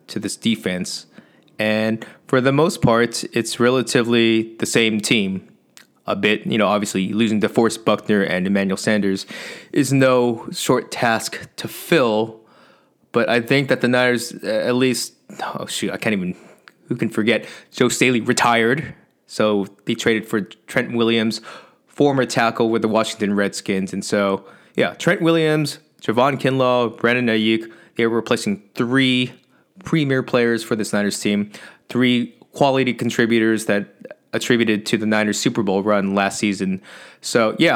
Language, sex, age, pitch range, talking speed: English, male, 20-39, 105-125 Hz, 150 wpm